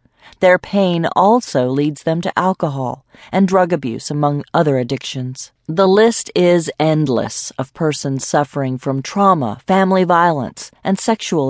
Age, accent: 40-59, American